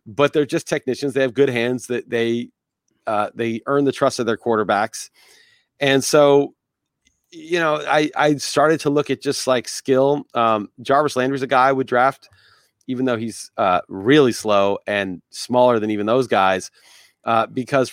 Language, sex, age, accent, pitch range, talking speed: English, male, 40-59, American, 115-140 Hz, 180 wpm